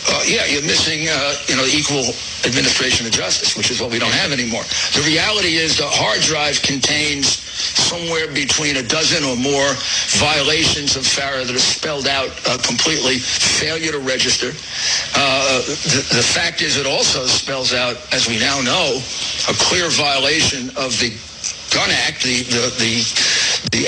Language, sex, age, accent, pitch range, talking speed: English, male, 60-79, American, 120-150 Hz, 165 wpm